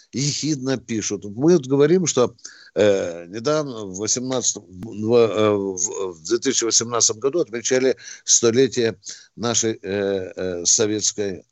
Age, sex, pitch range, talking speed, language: 60-79, male, 110-175 Hz, 110 wpm, Russian